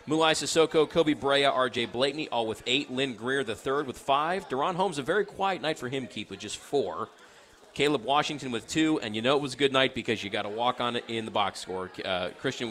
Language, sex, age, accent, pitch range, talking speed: English, male, 40-59, American, 100-135 Hz, 245 wpm